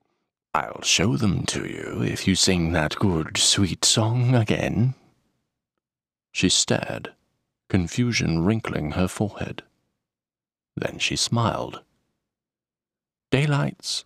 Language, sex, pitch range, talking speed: English, male, 95-145 Hz, 100 wpm